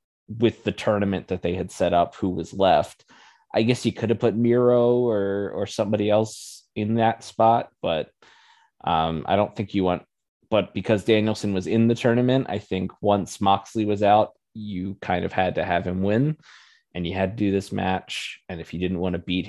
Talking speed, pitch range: 205 wpm, 95-110 Hz